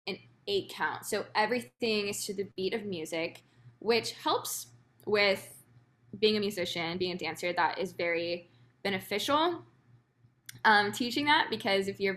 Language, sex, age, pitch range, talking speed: English, female, 10-29, 150-215 Hz, 145 wpm